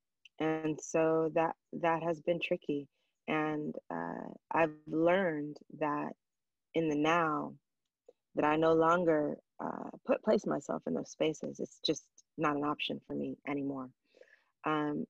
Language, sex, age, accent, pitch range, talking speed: English, female, 20-39, American, 145-165 Hz, 140 wpm